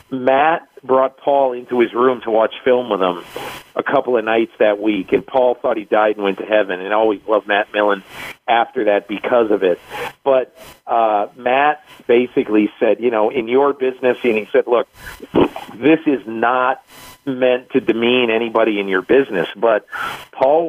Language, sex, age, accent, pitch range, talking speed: English, male, 50-69, American, 110-140 Hz, 180 wpm